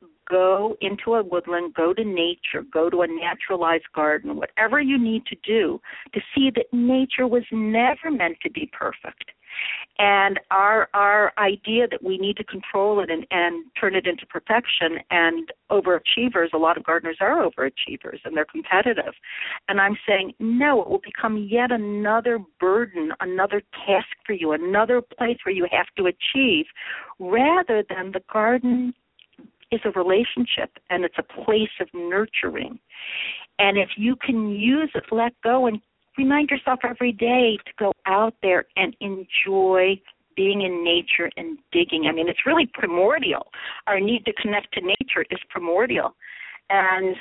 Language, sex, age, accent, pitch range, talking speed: English, female, 50-69, American, 190-245 Hz, 160 wpm